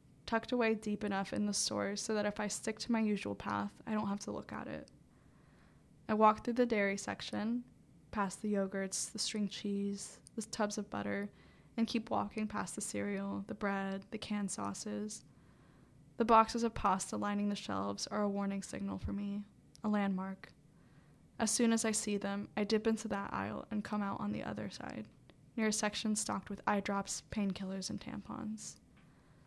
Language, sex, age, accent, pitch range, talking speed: English, female, 10-29, American, 195-215 Hz, 190 wpm